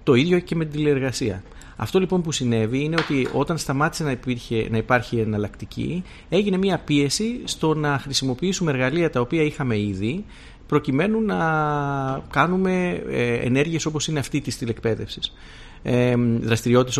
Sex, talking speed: male, 140 wpm